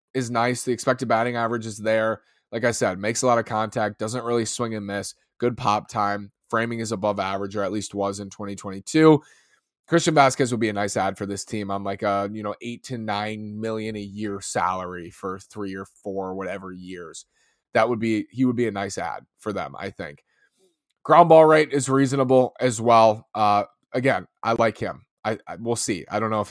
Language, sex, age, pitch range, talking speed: English, male, 20-39, 100-135 Hz, 215 wpm